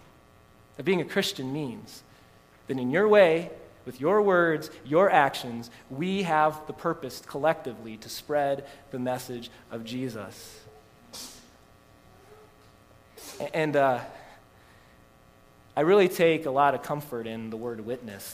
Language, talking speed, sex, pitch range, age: English, 125 wpm, male, 125-180 Hz, 20-39